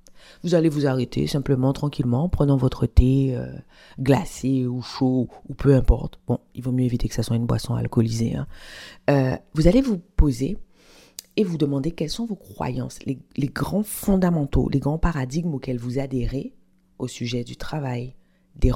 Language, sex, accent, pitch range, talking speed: French, female, French, 120-150 Hz, 180 wpm